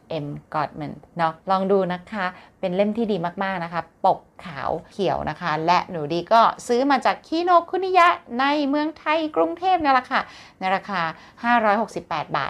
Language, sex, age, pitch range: Thai, female, 30-49, 160-245 Hz